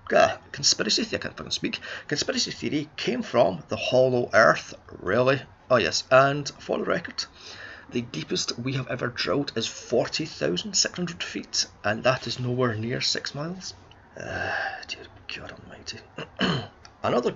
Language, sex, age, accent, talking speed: English, male, 30-49, British, 150 wpm